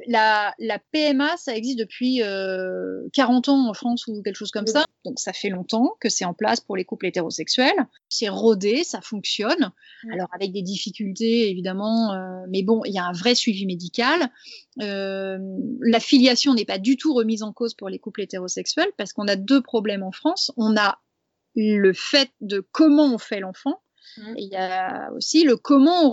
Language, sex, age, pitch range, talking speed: French, female, 30-49, 205-285 Hz, 195 wpm